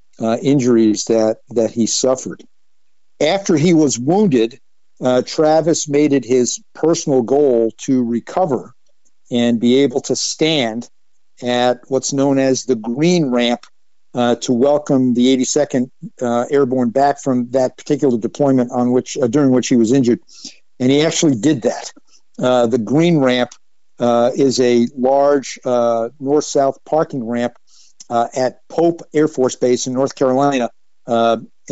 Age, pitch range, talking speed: 60-79, 120-145 Hz, 150 wpm